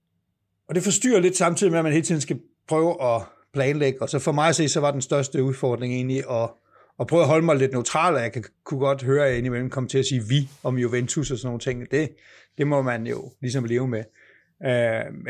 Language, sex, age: Danish, male, 60-79